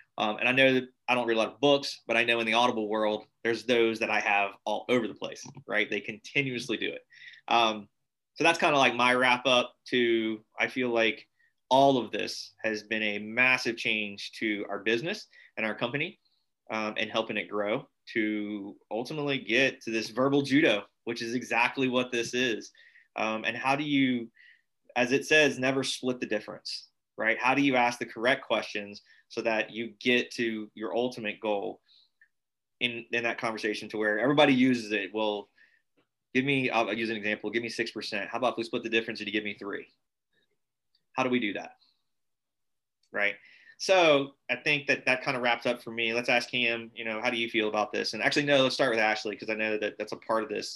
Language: English